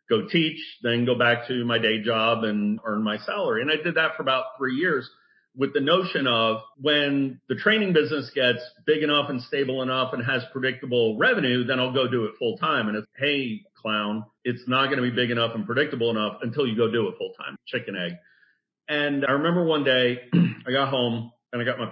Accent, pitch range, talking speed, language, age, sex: American, 115-145 Hz, 220 wpm, English, 40-59, male